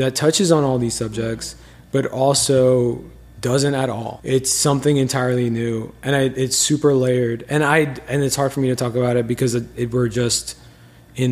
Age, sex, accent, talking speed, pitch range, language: 20-39, male, American, 195 wpm, 120-135 Hz, English